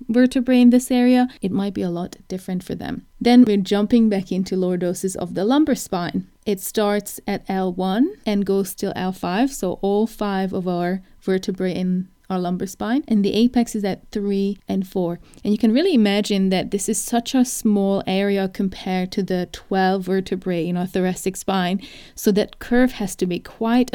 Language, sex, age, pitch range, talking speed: English, female, 30-49, 185-220 Hz, 195 wpm